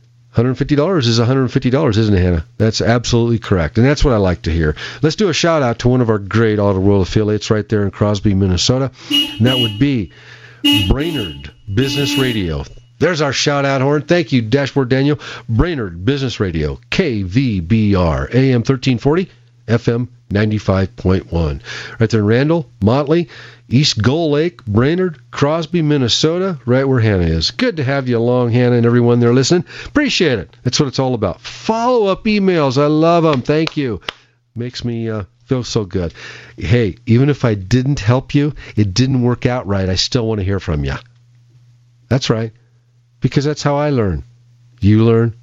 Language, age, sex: English, 50-69, male